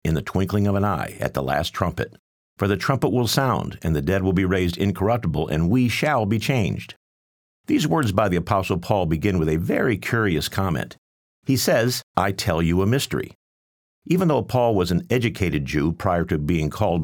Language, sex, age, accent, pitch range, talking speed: English, male, 50-69, American, 80-110 Hz, 200 wpm